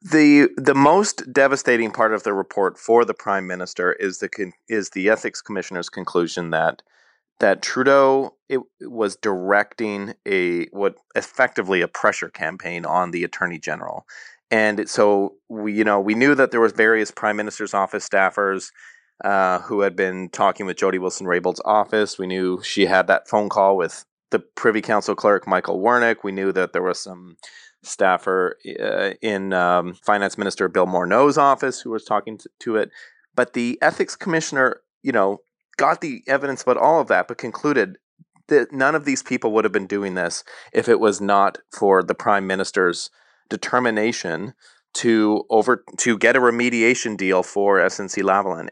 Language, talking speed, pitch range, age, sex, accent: English, 170 wpm, 95-125 Hz, 30-49, male, American